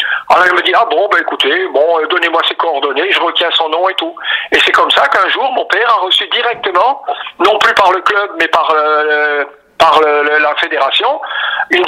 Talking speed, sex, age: 220 wpm, male, 50-69